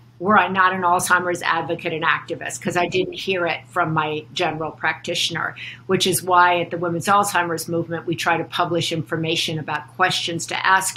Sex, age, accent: female, 50-69, American